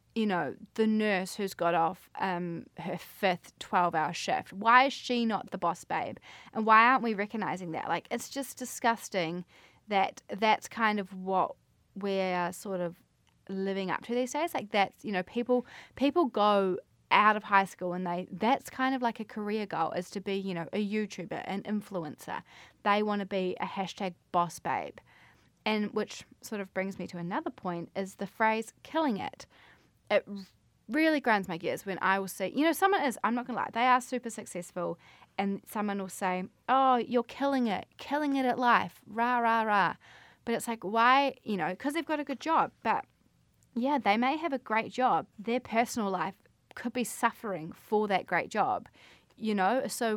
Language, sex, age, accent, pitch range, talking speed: English, female, 20-39, Australian, 190-245 Hz, 195 wpm